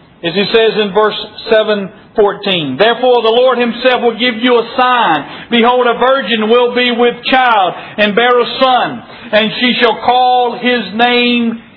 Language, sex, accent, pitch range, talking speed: English, male, American, 210-270 Hz, 165 wpm